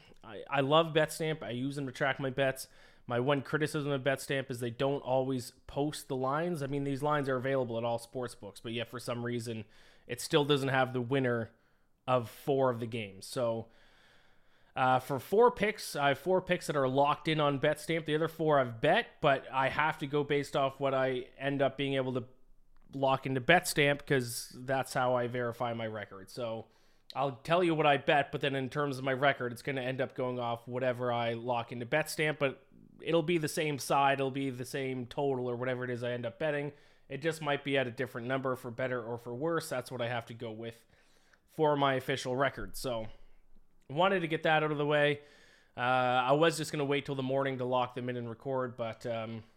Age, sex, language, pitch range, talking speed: 30-49, male, English, 125-145 Hz, 230 wpm